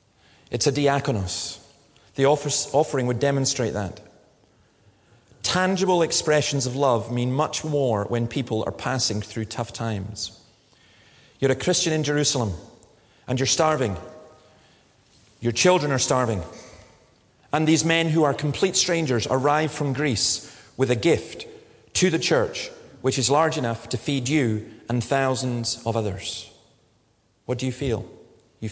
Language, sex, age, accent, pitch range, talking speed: English, male, 30-49, British, 110-140 Hz, 140 wpm